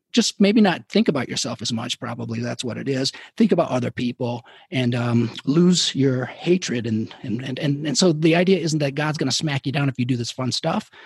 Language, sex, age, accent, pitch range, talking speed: English, male, 40-59, American, 130-185 Hz, 235 wpm